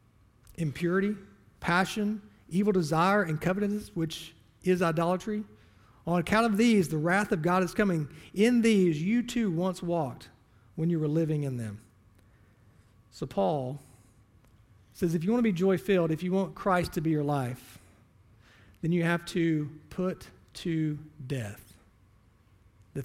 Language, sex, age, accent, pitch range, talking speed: English, male, 40-59, American, 110-170 Hz, 145 wpm